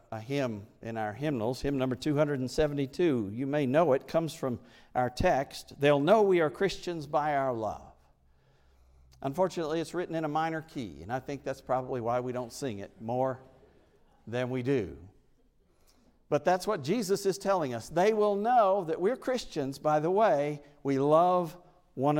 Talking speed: 175 wpm